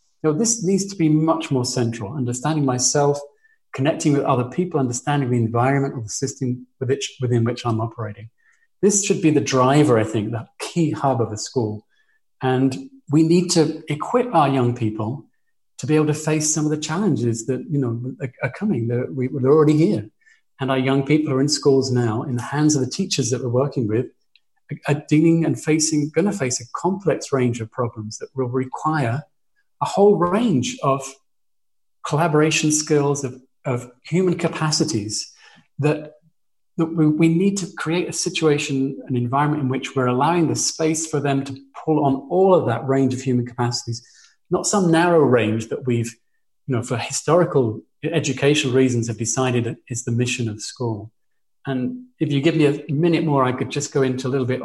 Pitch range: 125-155 Hz